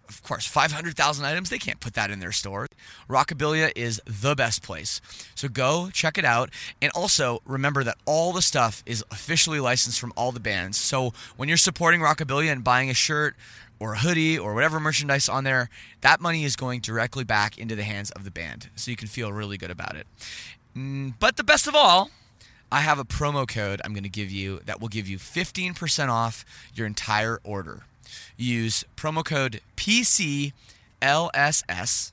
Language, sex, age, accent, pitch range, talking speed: English, male, 20-39, American, 110-150 Hz, 185 wpm